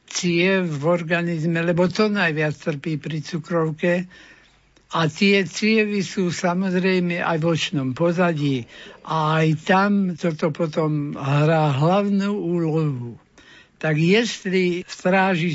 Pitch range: 160-190 Hz